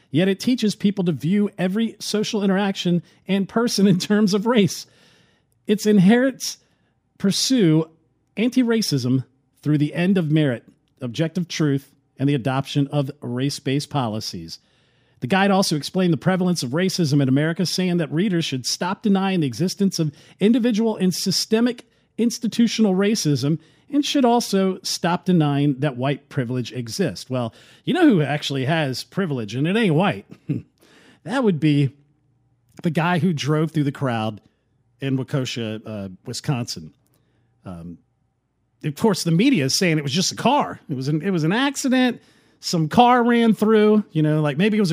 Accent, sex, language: American, male, English